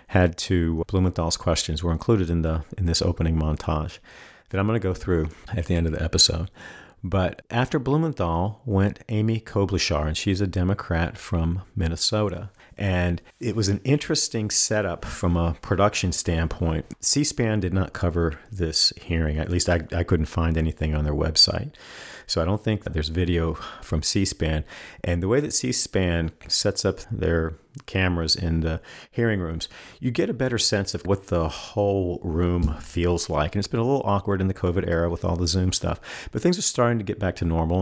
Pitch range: 85-105 Hz